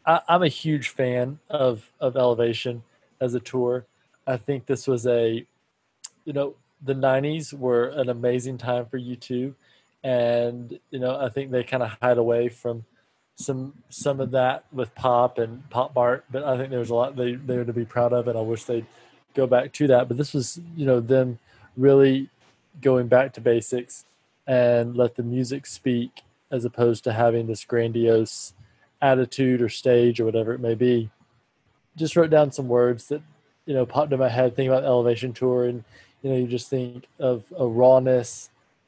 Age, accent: 20-39, American